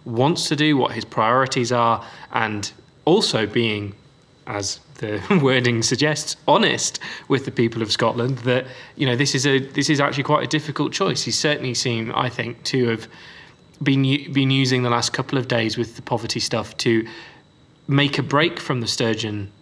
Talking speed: 180 wpm